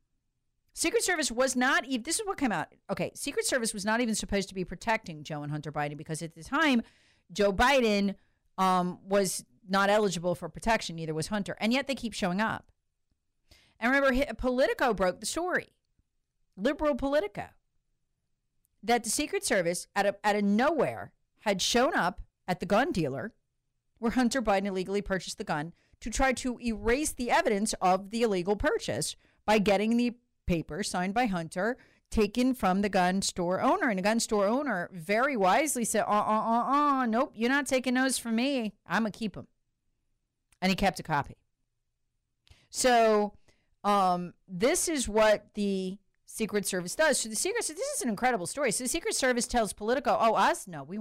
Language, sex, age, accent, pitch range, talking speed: English, female, 40-59, American, 185-250 Hz, 185 wpm